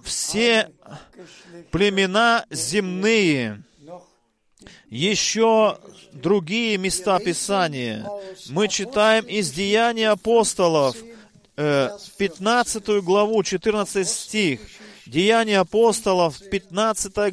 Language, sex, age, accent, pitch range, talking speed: Russian, male, 40-59, native, 170-215 Hz, 65 wpm